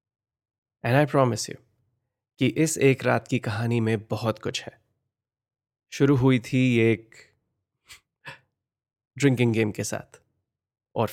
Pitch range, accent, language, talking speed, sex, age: 110-130 Hz, native, Hindi, 120 wpm, male, 20-39